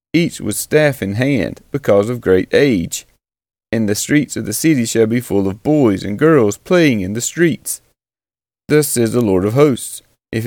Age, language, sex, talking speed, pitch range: 30-49, English, male, 190 wpm, 110-145 Hz